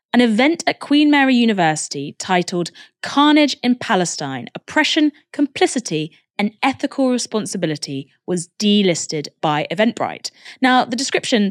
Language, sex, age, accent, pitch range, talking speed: English, female, 20-39, British, 170-255 Hz, 115 wpm